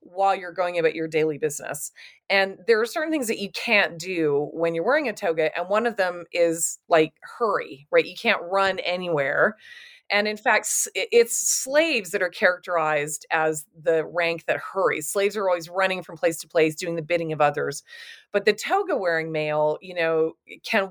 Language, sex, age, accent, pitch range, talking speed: English, female, 30-49, American, 160-215 Hz, 190 wpm